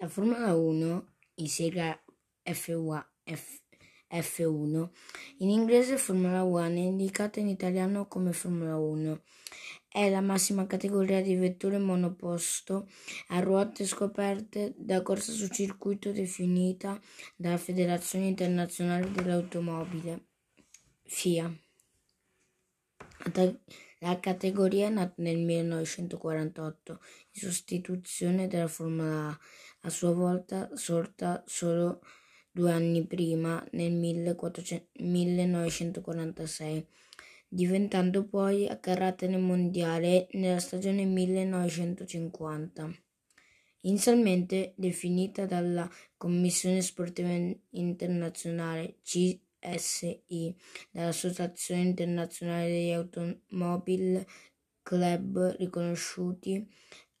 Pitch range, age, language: 170-190 Hz, 20-39, Italian